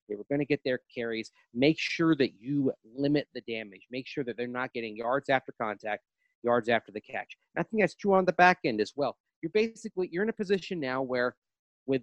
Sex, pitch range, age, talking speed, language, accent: male, 115-145 Hz, 40-59, 235 wpm, English, American